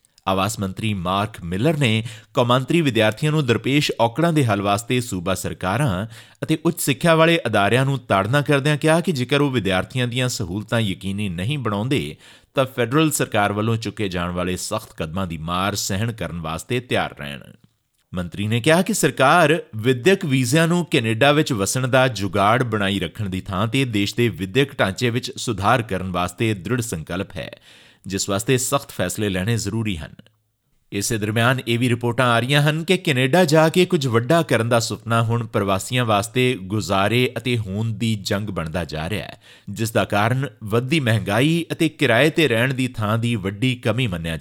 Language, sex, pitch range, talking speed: Punjabi, male, 100-135 Hz, 145 wpm